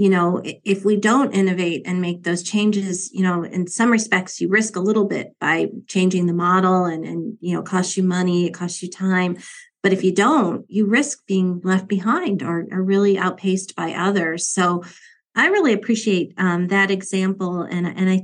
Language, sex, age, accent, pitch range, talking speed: English, female, 40-59, American, 180-205 Hz, 195 wpm